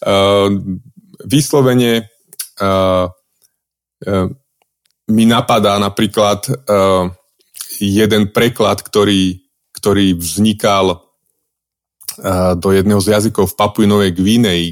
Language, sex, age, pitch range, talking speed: Slovak, male, 30-49, 95-115 Hz, 85 wpm